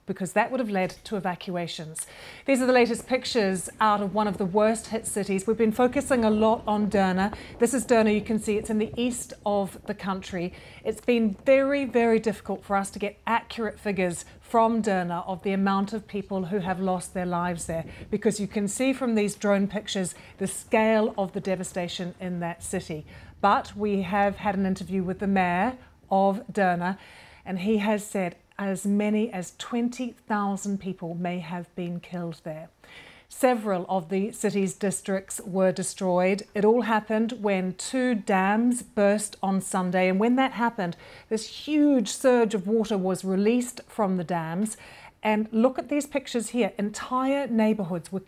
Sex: female